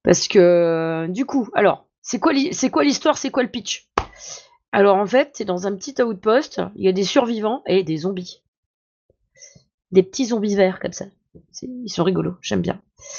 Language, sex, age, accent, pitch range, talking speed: French, female, 20-39, French, 185-255 Hz, 190 wpm